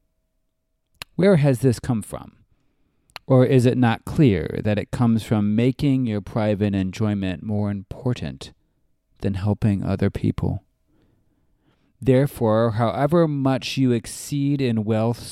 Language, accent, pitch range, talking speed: English, American, 110-145 Hz, 120 wpm